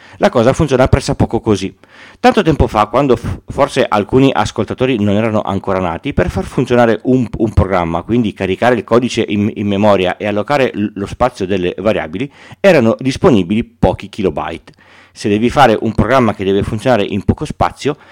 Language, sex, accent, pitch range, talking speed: Italian, male, native, 100-125 Hz, 175 wpm